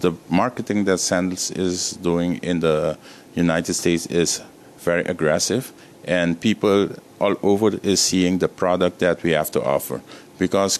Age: 50-69